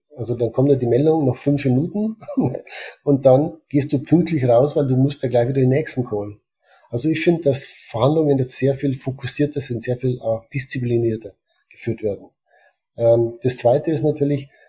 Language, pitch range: German, 120-135 Hz